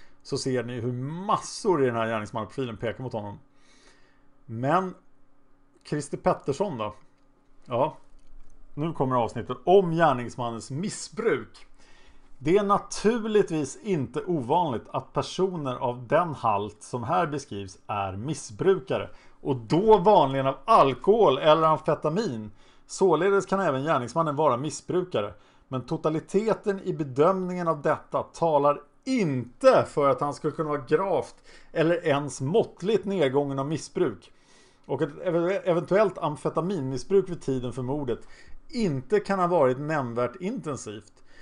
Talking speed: 125 wpm